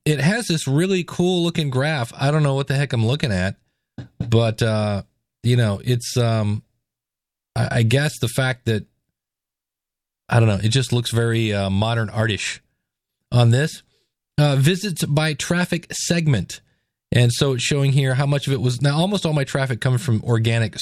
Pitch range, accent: 115-150 Hz, American